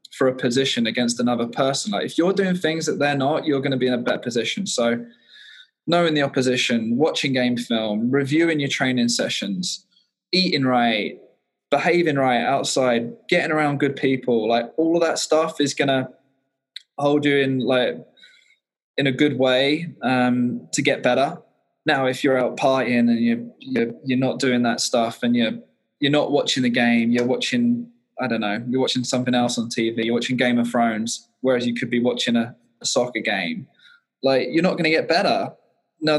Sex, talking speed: male, 190 wpm